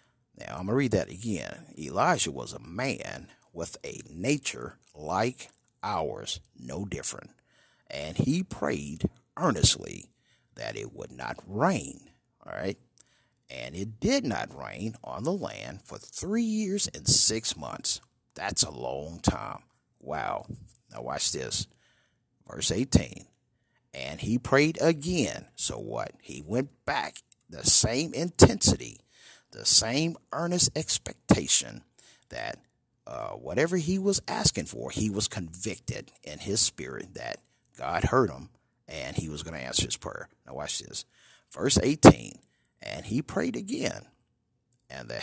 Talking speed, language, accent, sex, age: 140 wpm, English, American, male, 50-69